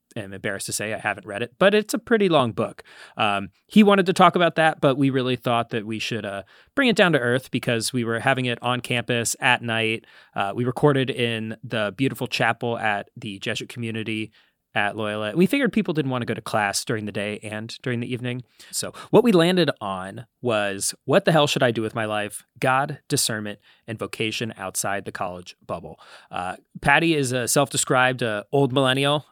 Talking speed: 210 wpm